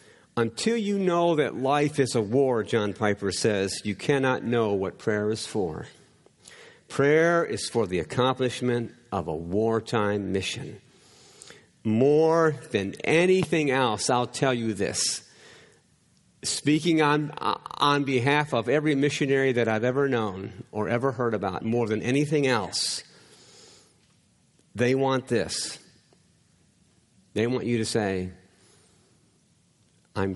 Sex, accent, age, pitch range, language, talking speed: male, American, 50-69, 110-145 Hz, English, 125 wpm